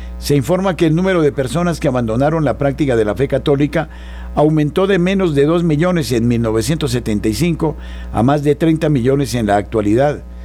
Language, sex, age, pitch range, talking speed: Spanish, male, 50-69, 95-155 Hz, 180 wpm